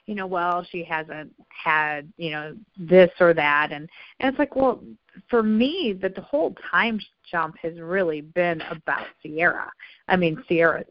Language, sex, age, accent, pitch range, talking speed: English, female, 40-59, American, 160-185 Hz, 170 wpm